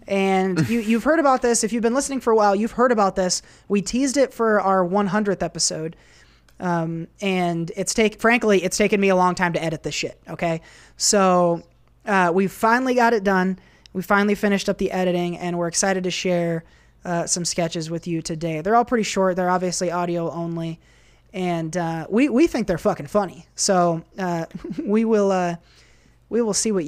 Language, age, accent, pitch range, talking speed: English, 20-39, American, 170-210 Hz, 200 wpm